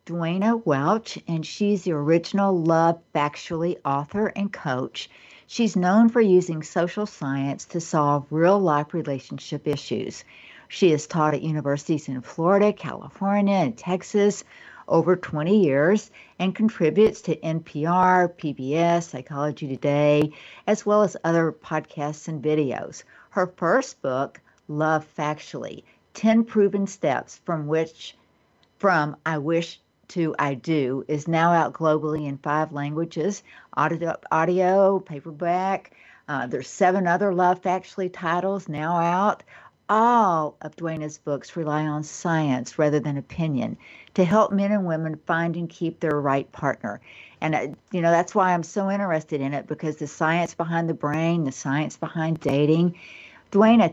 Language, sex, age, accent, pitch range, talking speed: English, female, 60-79, American, 150-190 Hz, 140 wpm